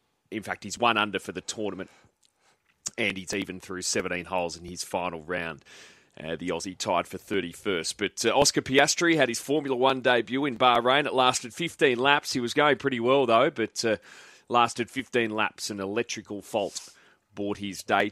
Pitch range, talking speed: 95-125 Hz, 185 wpm